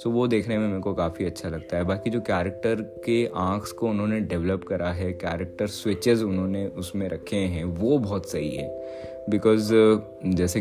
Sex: male